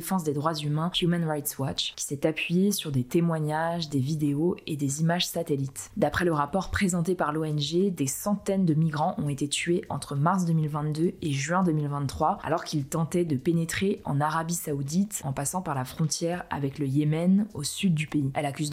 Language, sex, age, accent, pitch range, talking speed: French, female, 20-39, French, 150-180 Hz, 190 wpm